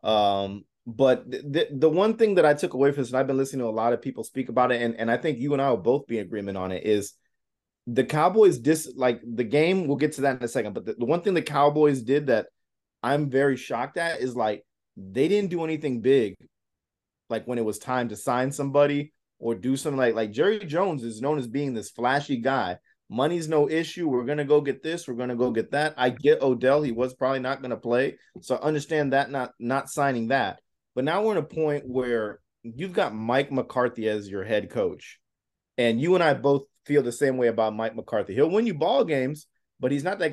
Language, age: English, 20-39